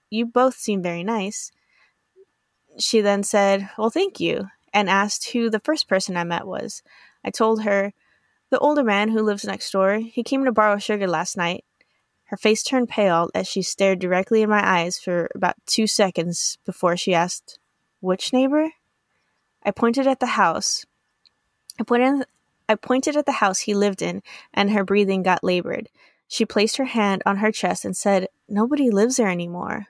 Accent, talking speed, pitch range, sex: American, 175 wpm, 190-230 Hz, female